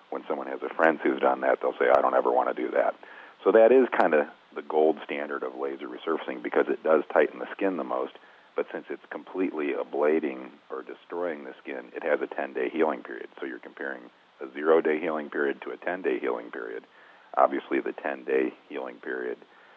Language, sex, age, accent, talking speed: English, male, 40-59, American, 205 wpm